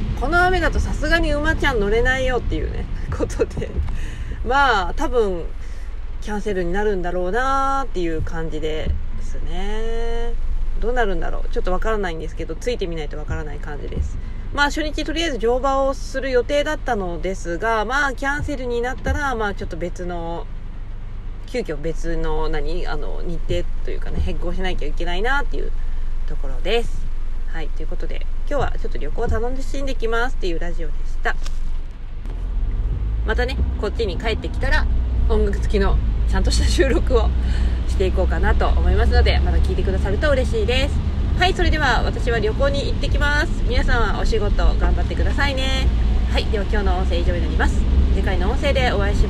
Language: Japanese